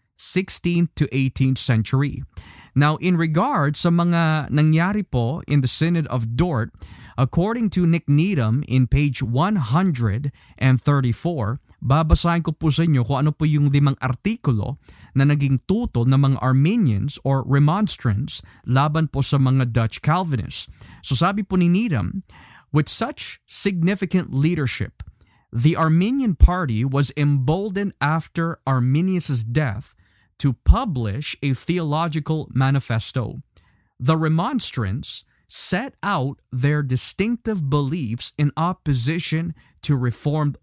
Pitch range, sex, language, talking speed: 125-160 Hz, male, Filipino, 120 wpm